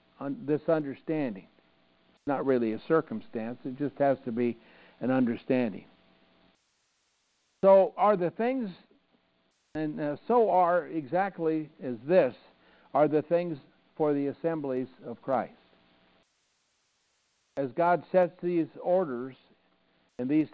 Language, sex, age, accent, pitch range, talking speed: English, male, 60-79, American, 115-170 Hz, 115 wpm